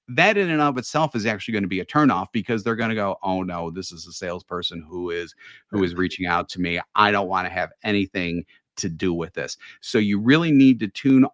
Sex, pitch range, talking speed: male, 90-115 Hz, 250 wpm